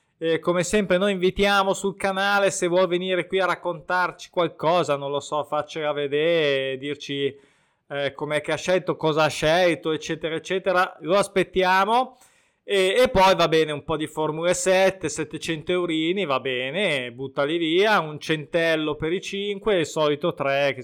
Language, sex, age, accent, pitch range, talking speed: Italian, male, 20-39, native, 150-190 Hz, 165 wpm